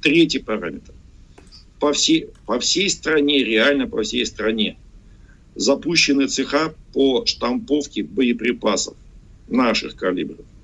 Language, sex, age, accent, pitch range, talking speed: Russian, male, 50-69, native, 115-165 Hz, 95 wpm